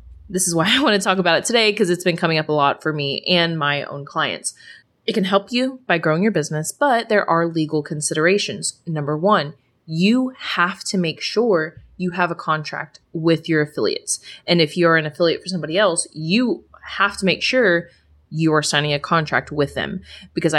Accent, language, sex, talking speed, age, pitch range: American, English, female, 205 wpm, 20-39, 155-190 Hz